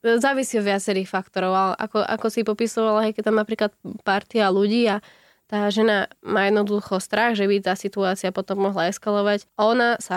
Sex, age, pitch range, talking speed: female, 20-39, 185-205 Hz, 170 wpm